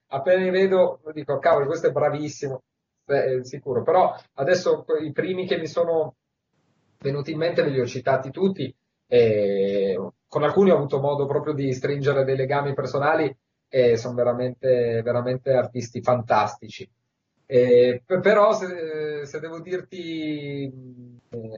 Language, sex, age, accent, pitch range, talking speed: Italian, male, 30-49, native, 125-160 Hz, 145 wpm